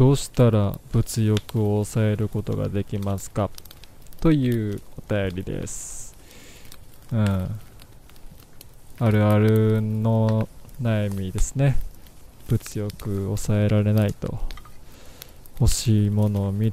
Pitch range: 100-120 Hz